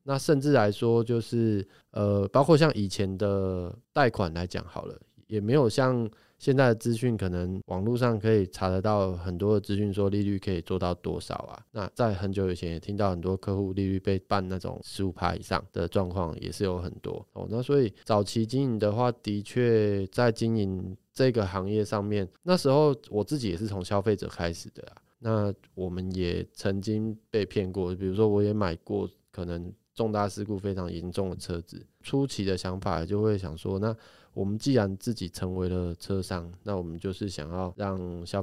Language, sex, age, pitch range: Chinese, male, 20-39, 95-115 Hz